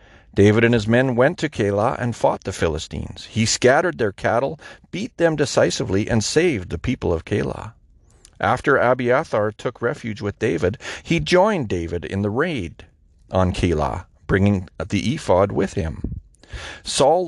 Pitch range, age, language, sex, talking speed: 95-135 Hz, 40-59, English, male, 155 wpm